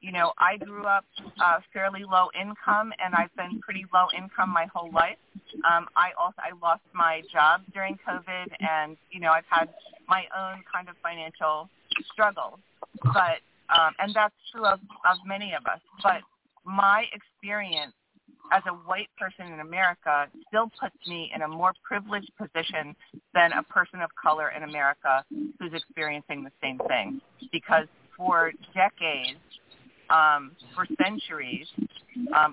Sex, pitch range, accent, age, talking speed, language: female, 155-195 Hz, American, 40-59, 155 wpm, English